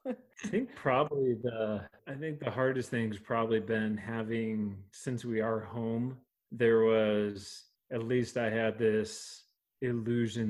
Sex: male